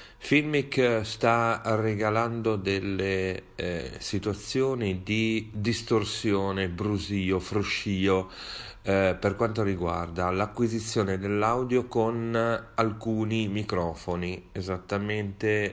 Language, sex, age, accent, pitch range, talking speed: Italian, male, 40-59, native, 95-120 Hz, 75 wpm